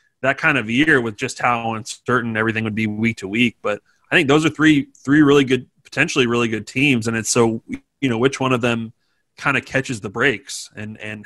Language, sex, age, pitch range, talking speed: English, male, 30-49, 115-135 Hz, 230 wpm